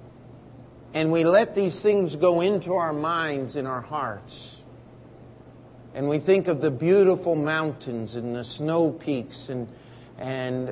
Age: 50-69